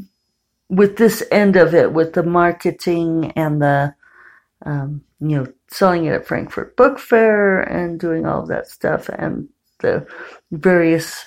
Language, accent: English, American